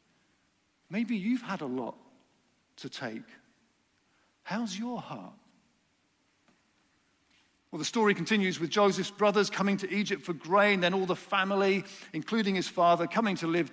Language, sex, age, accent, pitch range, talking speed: English, male, 50-69, British, 170-225 Hz, 140 wpm